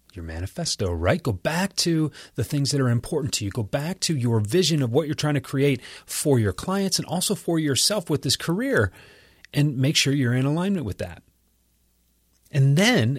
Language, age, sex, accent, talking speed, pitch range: English, 30-49, male, American, 200 wpm, 95-145 Hz